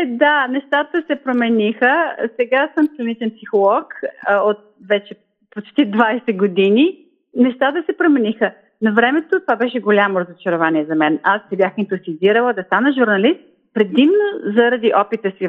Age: 40-59